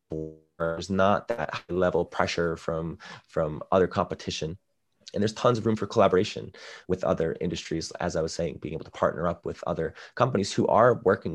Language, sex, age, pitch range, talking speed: English, male, 20-39, 85-100 Hz, 190 wpm